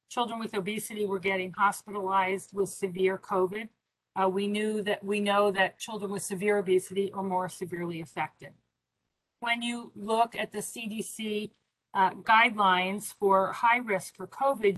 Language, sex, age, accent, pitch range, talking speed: English, female, 40-59, American, 185-210 Hz, 150 wpm